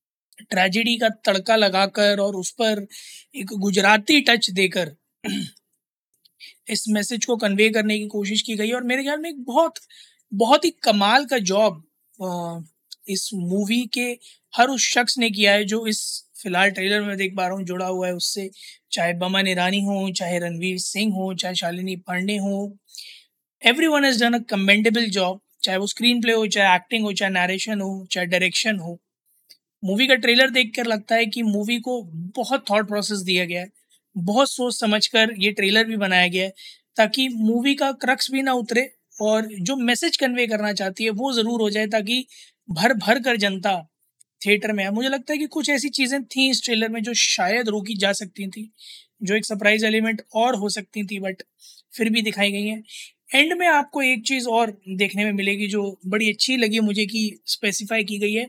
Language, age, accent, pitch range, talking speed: Hindi, 20-39, native, 195-240 Hz, 190 wpm